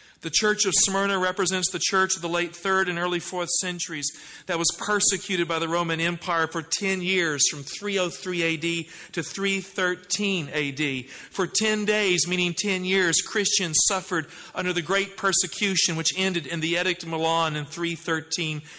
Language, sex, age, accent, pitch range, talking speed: English, male, 40-59, American, 165-195 Hz, 165 wpm